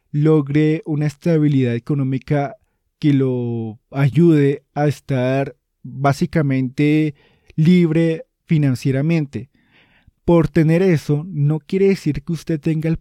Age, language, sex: 20-39, Spanish, male